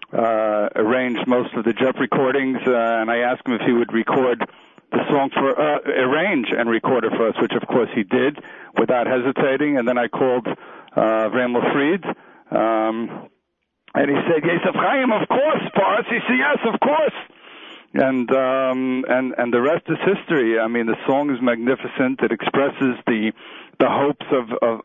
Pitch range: 115-135 Hz